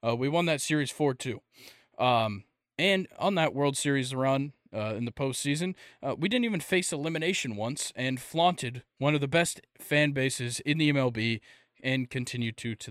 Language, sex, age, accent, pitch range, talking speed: English, male, 20-39, American, 125-170 Hz, 180 wpm